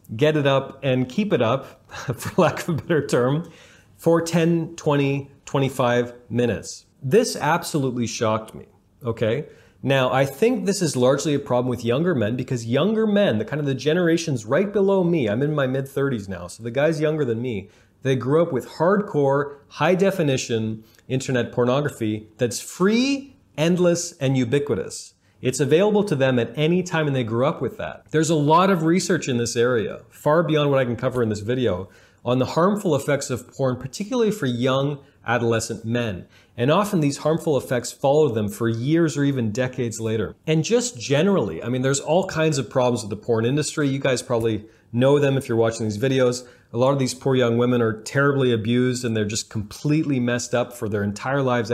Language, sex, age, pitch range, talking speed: English, male, 30-49, 120-155 Hz, 195 wpm